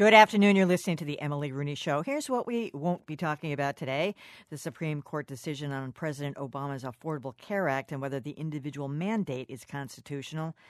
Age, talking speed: 50-69, 190 wpm